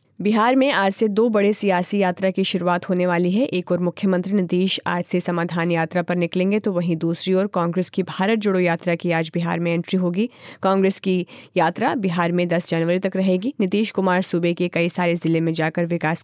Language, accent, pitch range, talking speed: Hindi, native, 170-195 Hz, 210 wpm